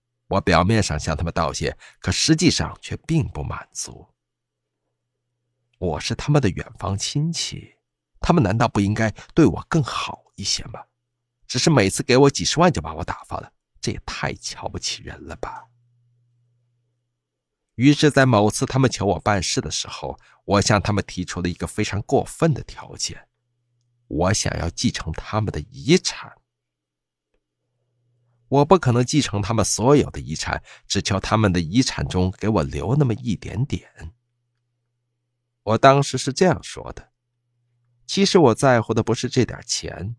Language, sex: Chinese, male